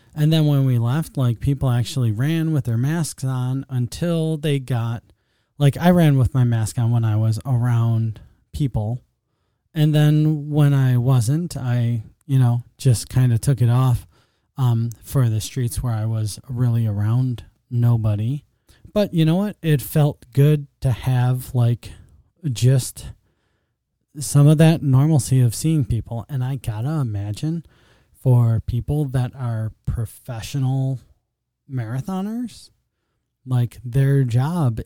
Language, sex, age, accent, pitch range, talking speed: English, male, 20-39, American, 115-145 Hz, 145 wpm